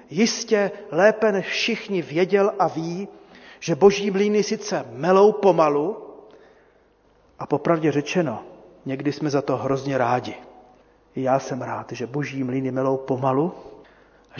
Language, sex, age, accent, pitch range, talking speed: Czech, male, 40-59, native, 155-210 Hz, 135 wpm